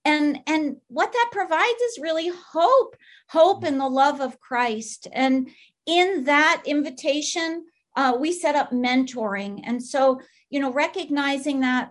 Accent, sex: American, female